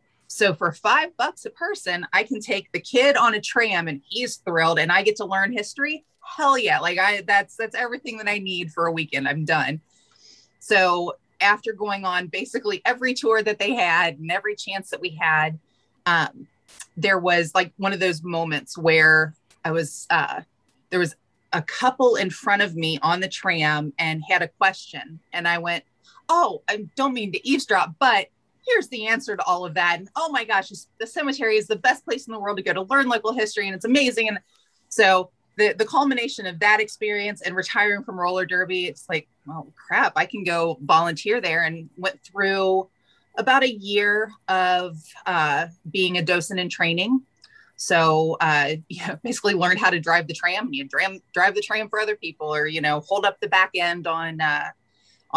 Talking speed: 200 wpm